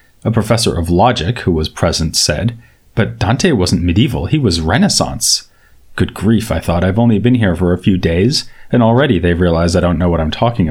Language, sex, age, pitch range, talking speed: English, male, 30-49, 90-115 Hz, 205 wpm